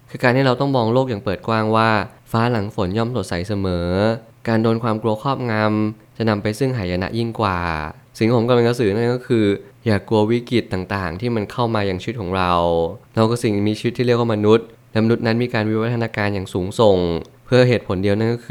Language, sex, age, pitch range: Thai, male, 20-39, 100-120 Hz